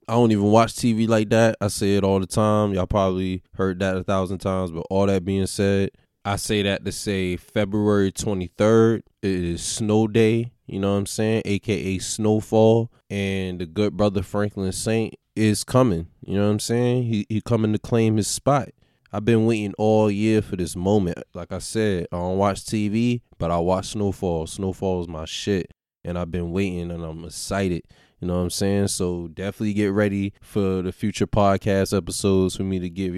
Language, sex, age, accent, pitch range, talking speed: English, male, 20-39, American, 95-110 Hz, 200 wpm